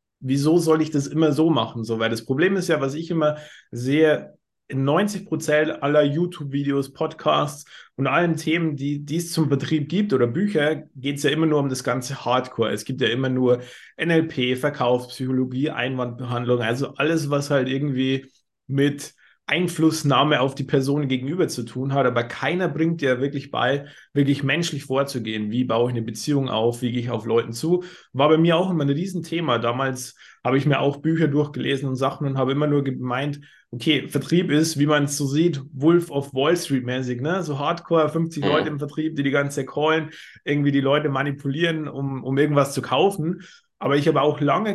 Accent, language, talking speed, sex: German, German, 195 wpm, male